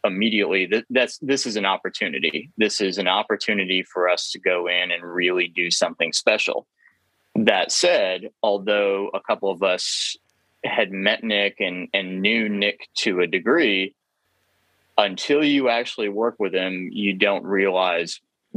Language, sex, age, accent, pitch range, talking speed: English, male, 20-39, American, 95-105 Hz, 150 wpm